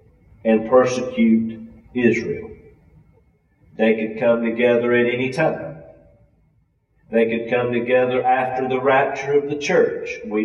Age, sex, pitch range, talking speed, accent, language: 40-59, male, 110-130 Hz, 120 wpm, American, English